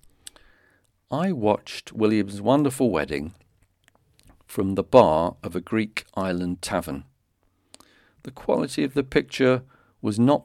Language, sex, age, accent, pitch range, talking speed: English, male, 50-69, British, 85-120 Hz, 115 wpm